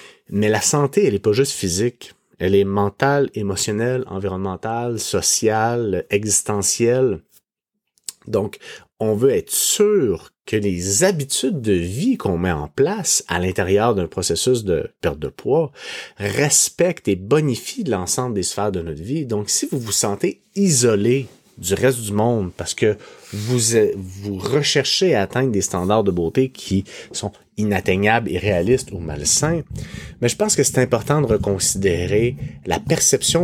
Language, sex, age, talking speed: French, male, 30-49, 150 wpm